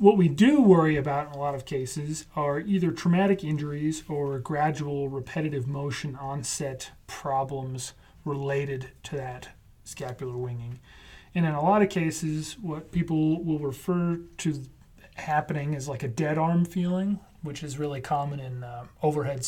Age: 30-49